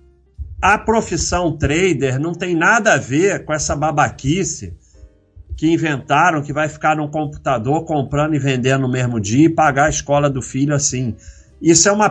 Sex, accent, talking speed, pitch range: male, Brazilian, 170 wpm, 130-170 Hz